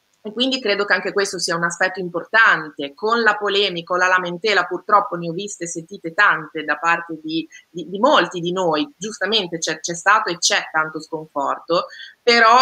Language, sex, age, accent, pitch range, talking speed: Italian, female, 20-39, native, 165-205 Hz, 190 wpm